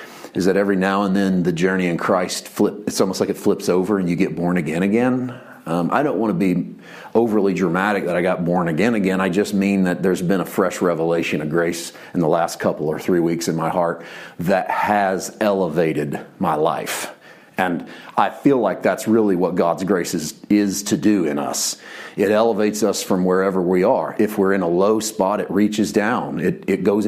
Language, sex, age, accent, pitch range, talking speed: English, male, 40-59, American, 95-125 Hz, 215 wpm